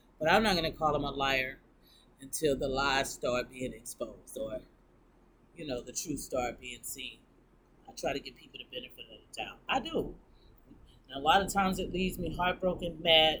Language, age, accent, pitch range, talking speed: English, 30-49, American, 135-165 Hz, 195 wpm